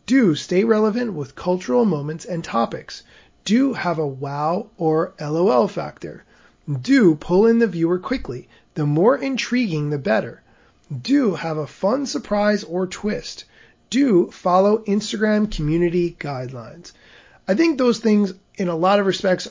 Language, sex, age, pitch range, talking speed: English, male, 30-49, 160-210 Hz, 145 wpm